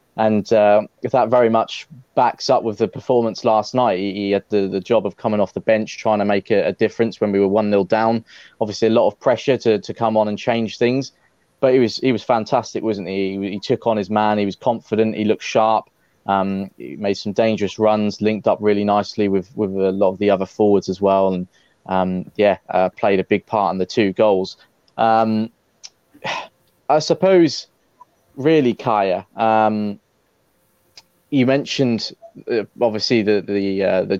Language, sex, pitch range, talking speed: English, male, 100-115 Hz, 200 wpm